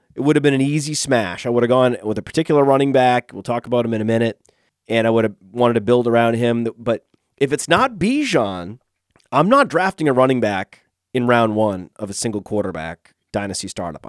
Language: English